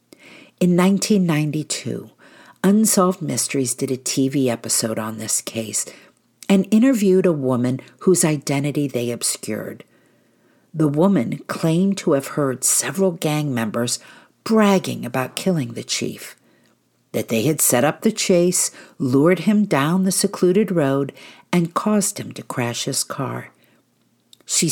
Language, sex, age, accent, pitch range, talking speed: English, female, 50-69, American, 125-175 Hz, 130 wpm